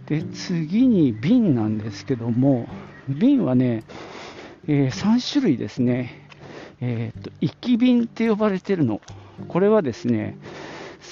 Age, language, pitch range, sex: 50-69, Japanese, 120-190 Hz, male